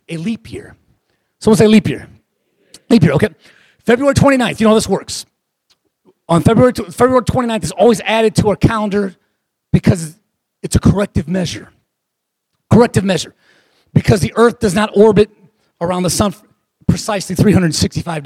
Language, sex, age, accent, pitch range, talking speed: English, male, 30-49, American, 165-215 Hz, 155 wpm